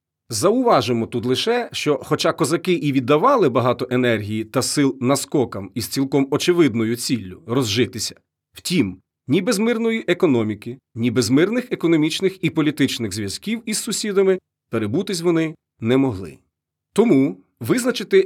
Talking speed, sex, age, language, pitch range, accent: 130 wpm, male, 40-59, Ukrainian, 115-185 Hz, native